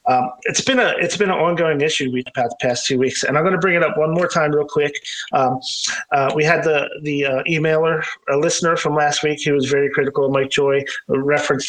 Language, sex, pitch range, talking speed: English, male, 135-180 Hz, 240 wpm